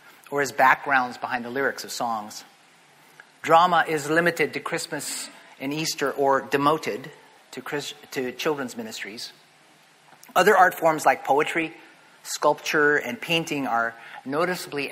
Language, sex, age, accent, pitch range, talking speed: English, male, 40-59, American, 130-170 Hz, 125 wpm